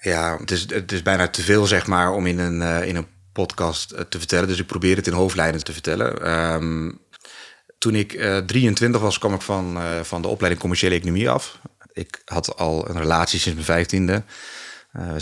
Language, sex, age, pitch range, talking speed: Dutch, male, 30-49, 85-100 Hz, 180 wpm